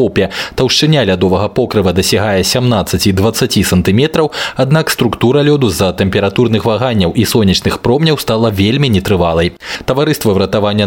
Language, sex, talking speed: Russian, male, 110 wpm